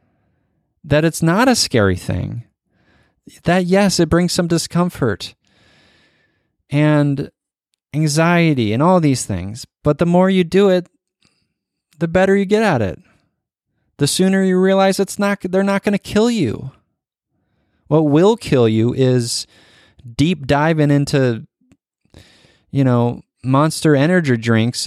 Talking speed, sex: 135 wpm, male